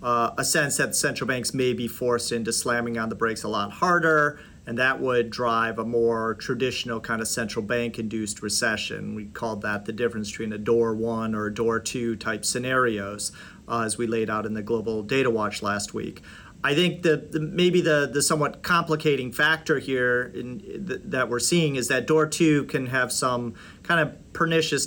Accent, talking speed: American, 195 wpm